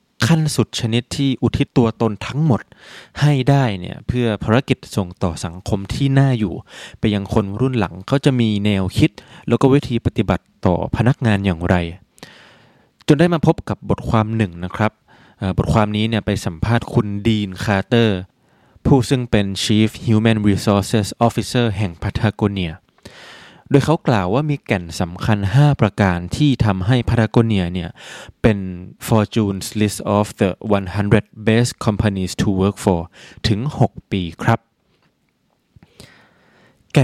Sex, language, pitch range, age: male, Thai, 100-125 Hz, 20-39